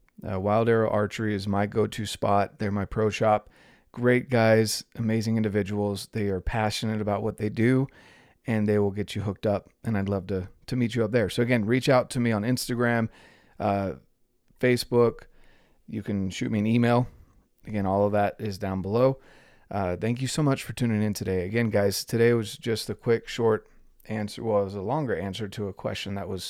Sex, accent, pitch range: male, American, 100-120 Hz